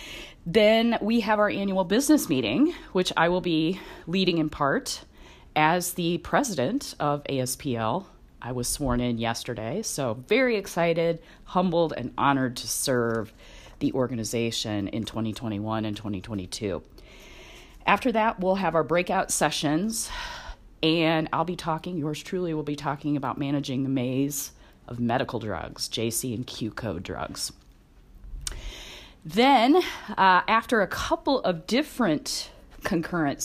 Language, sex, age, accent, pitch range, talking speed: English, female, 30-49, American, 130-190 Hz, 135 wpm